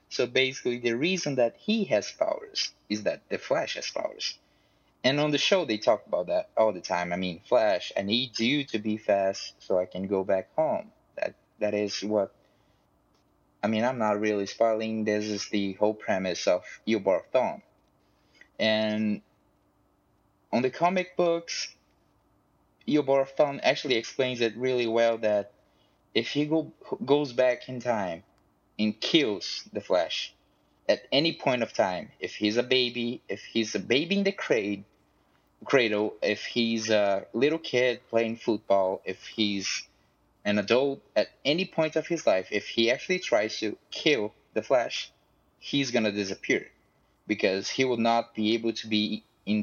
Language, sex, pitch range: English, male, 105-130 Hz